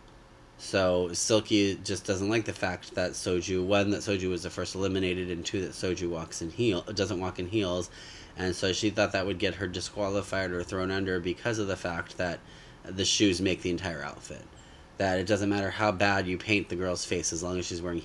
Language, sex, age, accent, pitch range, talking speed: English, male, 30-49, American, 85-100 Hz, 220 wpm